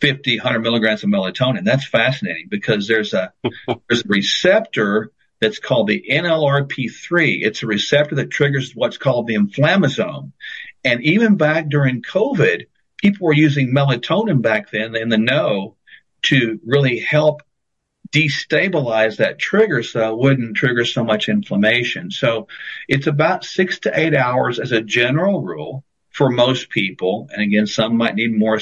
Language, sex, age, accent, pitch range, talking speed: English, male, 50-69, American, 110-150 Hz, 150 wpm